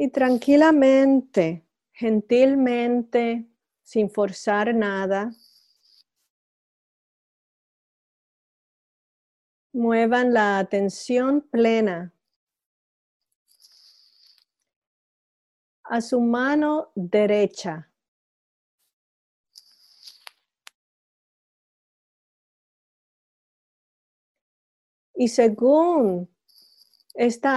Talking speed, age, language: 35 wpm, 40-59, English